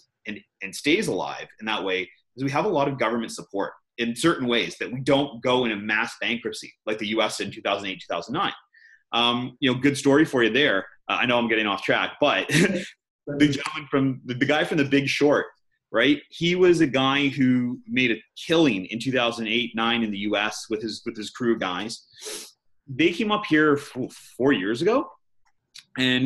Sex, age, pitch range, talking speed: male, 30-49, 115-150 Hz, 200 wpm